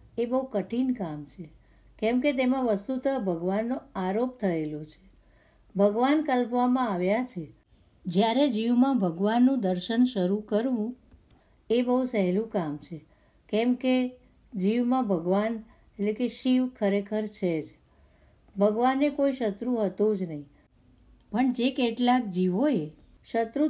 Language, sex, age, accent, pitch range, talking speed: Gujarati, female, 60-79, native, 195-250 Hz, 125 wpm